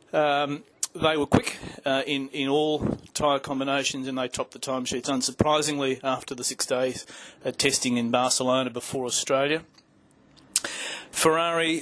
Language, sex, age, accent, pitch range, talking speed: English, male, 40-59, Australian, 130-150 Hz, 135 wpm